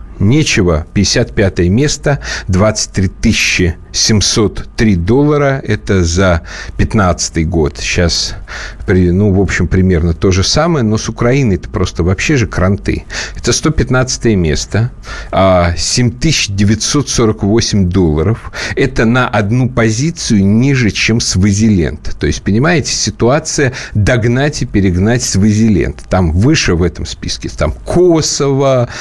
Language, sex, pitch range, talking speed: Russian, male, 90-120 Hz, 115 wpm